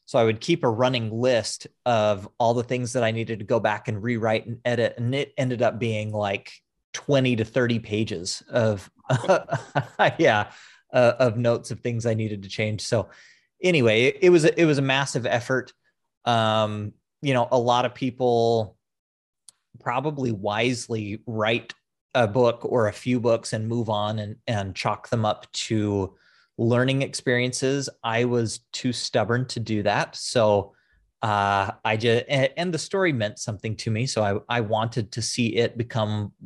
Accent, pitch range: American, 110-125 Hz